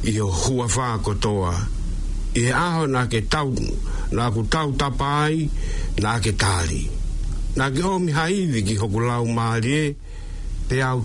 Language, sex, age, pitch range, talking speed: English, male, 60-79, 95-135 Hz, 130 wpm